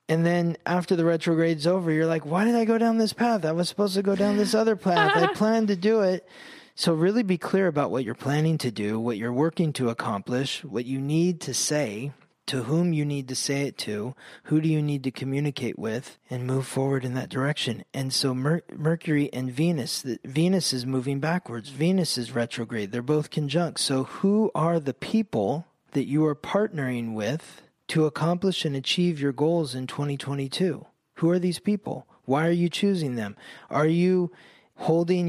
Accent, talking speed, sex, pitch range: American, 200 wpm, male, 125-165 Hz